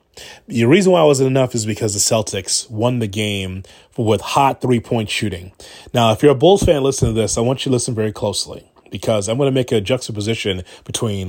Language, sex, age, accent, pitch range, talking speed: English, male, 30-49, American, 110-135 Hz, 220 wpm